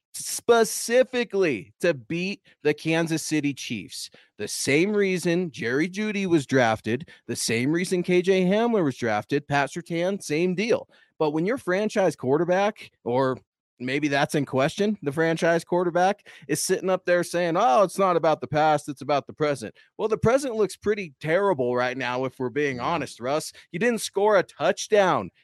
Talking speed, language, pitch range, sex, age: 165 wpm, English, 125-180 Hz, male, 30-49